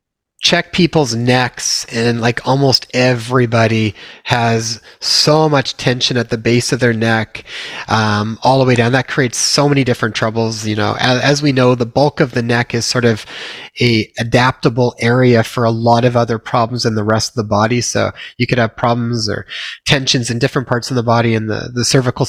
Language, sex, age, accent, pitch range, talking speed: English, male, 30-49, American, 115-140 Hz, 200 wpm